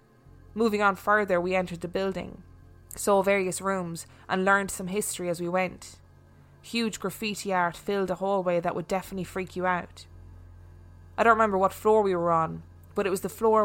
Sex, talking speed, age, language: female, 185 wpm, 20-39, English